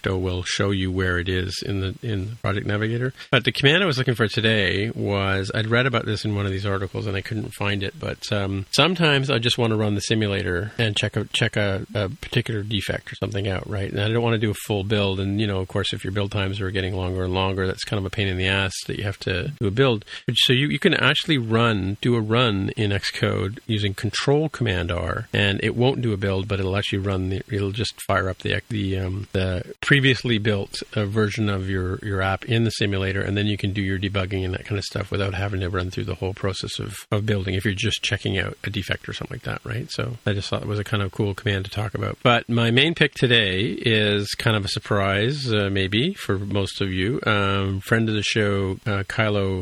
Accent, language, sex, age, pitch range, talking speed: American, English, male, 40-59, 95-115 Hz, 255 wpm